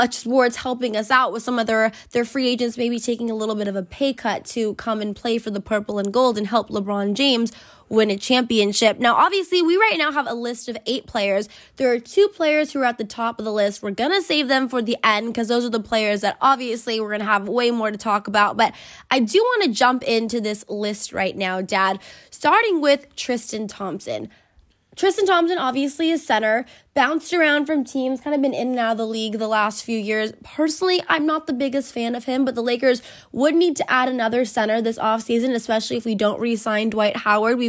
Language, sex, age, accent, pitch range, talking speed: English, female, 20-39, American, 215-255 Hz, 230 wpm